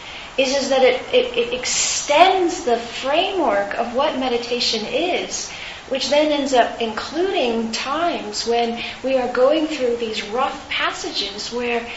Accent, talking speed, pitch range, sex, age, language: American, 135 wpm, 220-255 Hz, female, 40-59, English